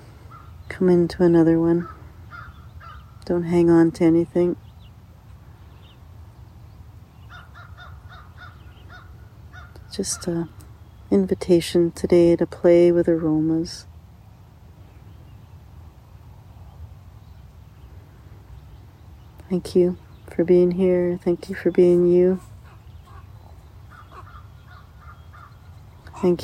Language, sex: English, female